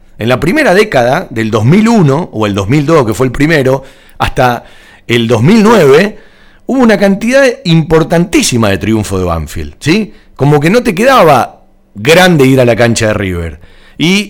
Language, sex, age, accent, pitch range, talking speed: Spanish, male, 40-59, Argentinian, 105-155 Hz, 155 wpm